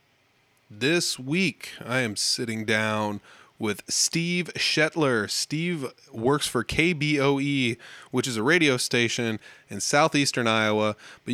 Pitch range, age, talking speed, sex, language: 115-140 Hz, 20-39, 115 wpm, male, English